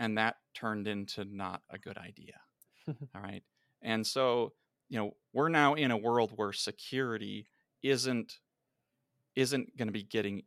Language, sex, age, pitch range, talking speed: English, male, 30-49, 105-120 Hz, 155 wpm